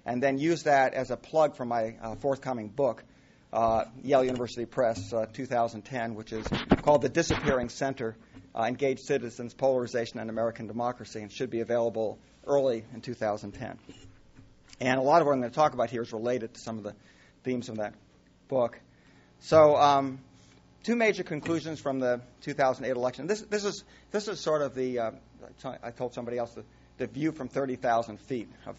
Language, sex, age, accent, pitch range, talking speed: English, male, 50-69, American, 115-135 Hz, 185 wpm